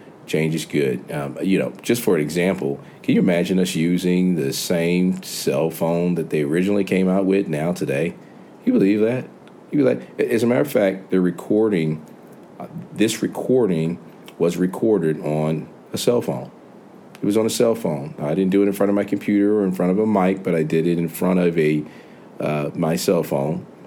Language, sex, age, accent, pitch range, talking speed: English, male, 40-59, American, 80-95 Hz, 210 wpm